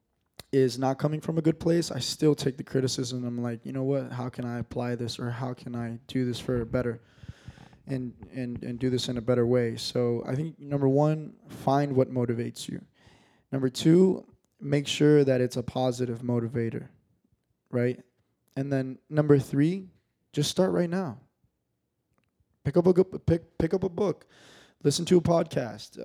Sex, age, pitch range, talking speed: male, 20-39, 120-155 Hz, 185 wpm